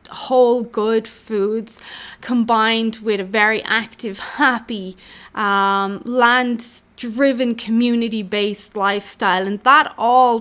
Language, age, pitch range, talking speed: English, 20-39, 210-265 Hz, 105 wpm